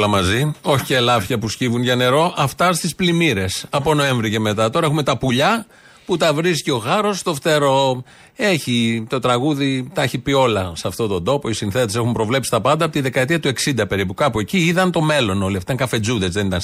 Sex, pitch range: male, 120-170 Hz